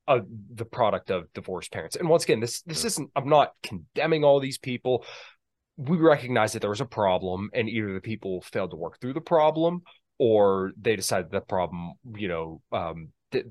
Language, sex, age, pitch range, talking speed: English, male, 20-39, 90-125 Hz, 195 wpm